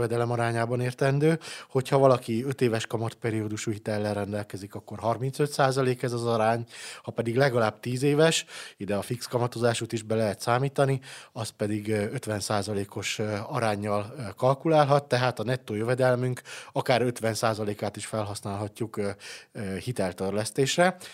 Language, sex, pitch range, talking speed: Hungarian, male, 105-125 Hz, 125 wpm